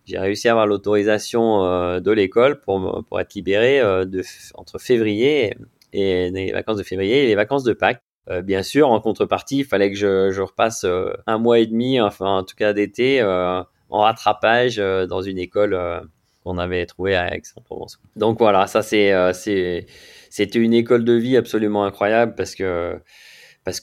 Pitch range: 95-120 Hz